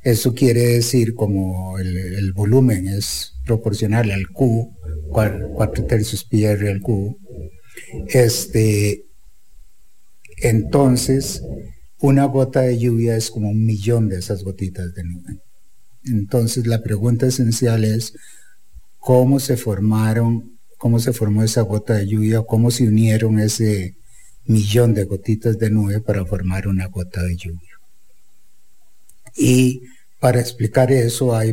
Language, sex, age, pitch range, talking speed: English, male, 50-69, 100-120 Hz, 130 wpm